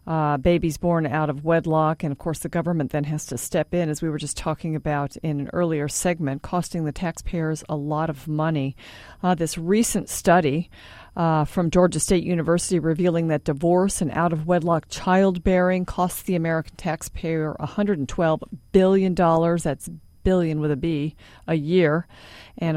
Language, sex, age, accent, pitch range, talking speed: English, female, 50-69, American, 155-180 Hz, 165 wpm